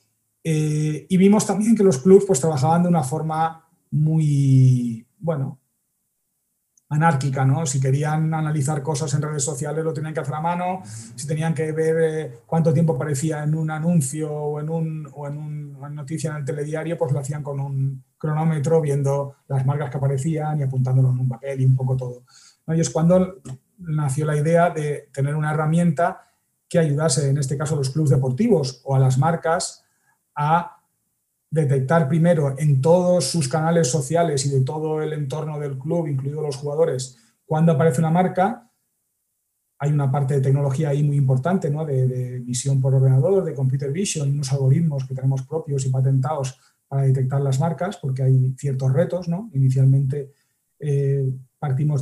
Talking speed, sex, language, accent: 175 wpm, male, Spanish, Spanish